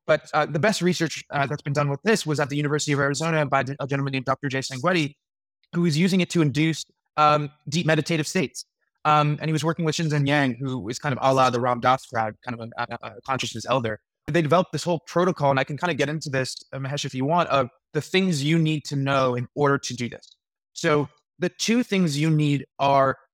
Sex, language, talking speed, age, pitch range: male, English, 245 wpm, 20-39, 130-160 Hz